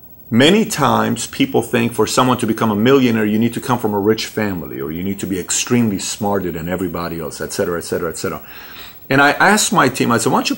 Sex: male